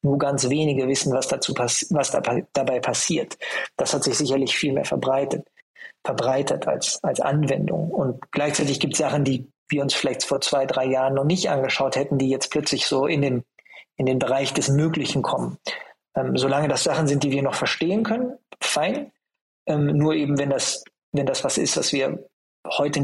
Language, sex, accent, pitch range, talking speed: German, male, German, 130-155 Hz, 190 wpm